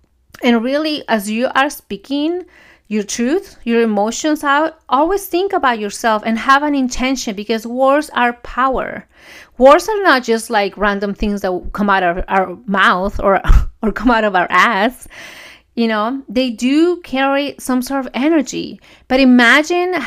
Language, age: English, 30-49